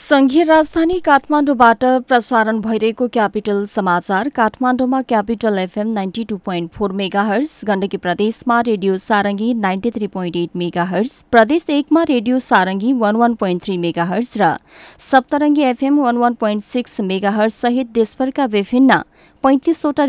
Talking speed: 110 wpm